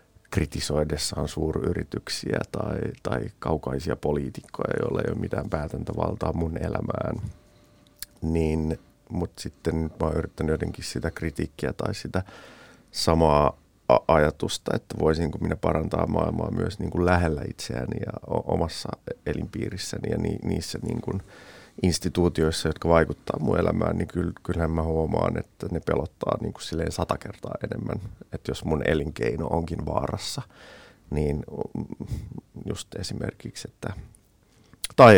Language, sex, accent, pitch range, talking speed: Finnish, male, native, 80-100 Hz, 125 wpm